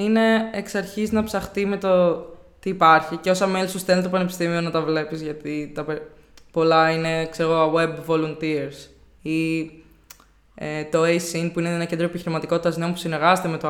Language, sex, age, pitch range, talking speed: Greek, female, 20-39, 160-205 Hz, 170 wpm